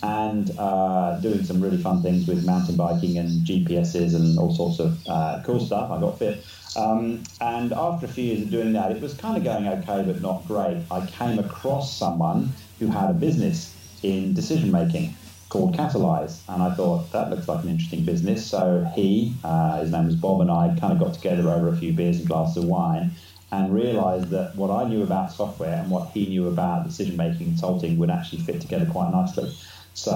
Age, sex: 30-49, male